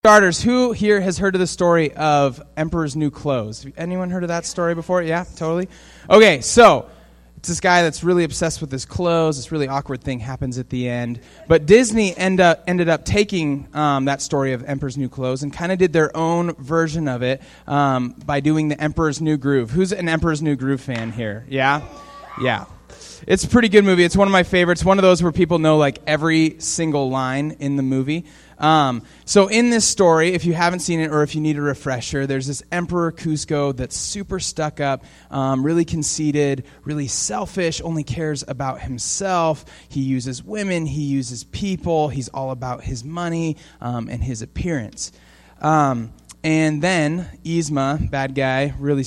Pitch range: 135-170 Hz